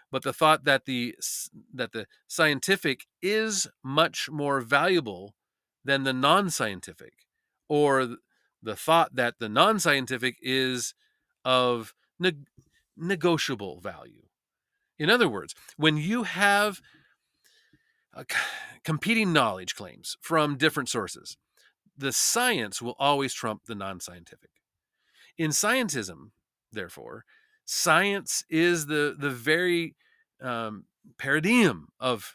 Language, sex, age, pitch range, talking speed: English, male, 40-59, 130-170 Hz, 105 wpm